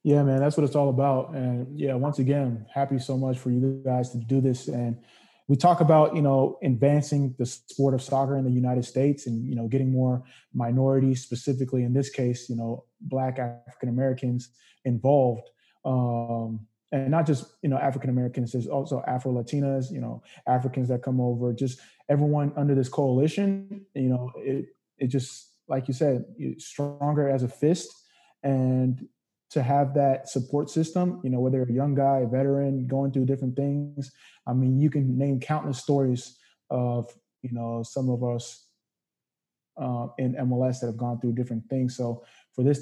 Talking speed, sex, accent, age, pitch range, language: 180 wpm, male, American, 20-39, 125-140 Hz, English